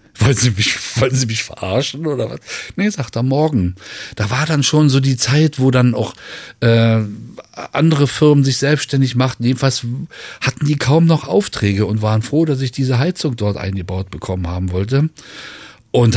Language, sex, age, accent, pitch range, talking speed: German, male, 40-59, German, 110-140 Hz, 170 wpm